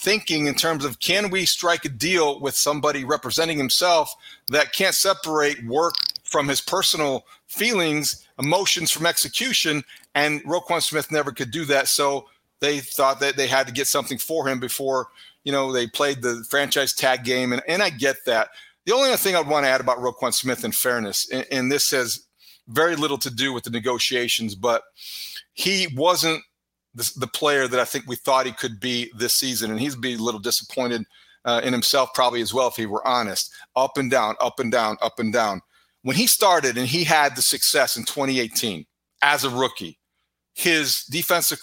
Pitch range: 125-155 Hz